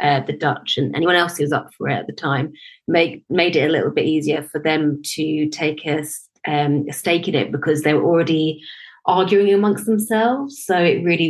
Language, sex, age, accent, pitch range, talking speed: English, female, 30-49, British, 155-185 Hz, 210 wpm